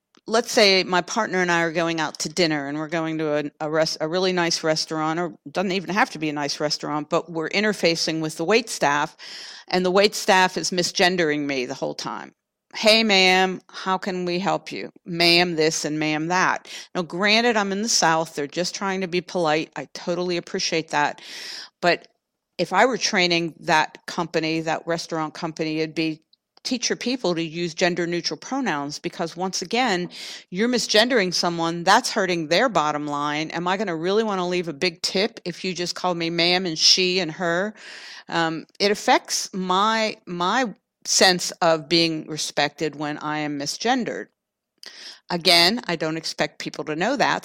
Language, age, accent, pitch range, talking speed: English, 50-69, American, 160-190 Hz, 185 wpm